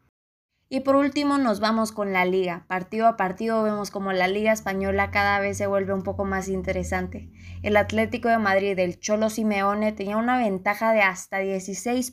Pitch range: 190-220 Hz